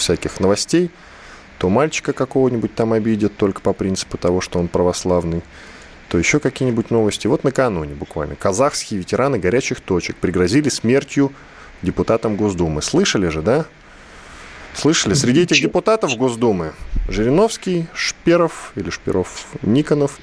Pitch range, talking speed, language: 90-130 Hz, 125 wpm, Russian